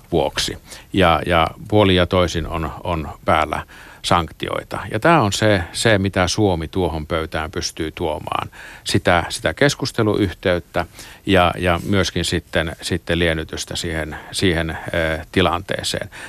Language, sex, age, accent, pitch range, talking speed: Finnish, male, 50-69, native, 90-105 Hz, 120 wpm